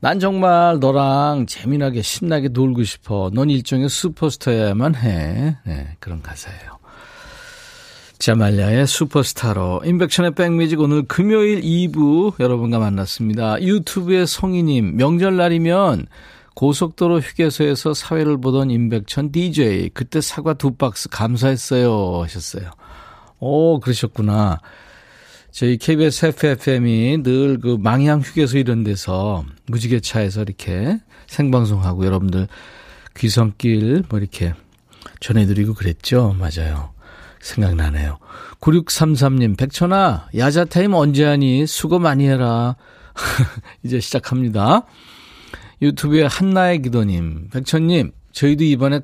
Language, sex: Korean, male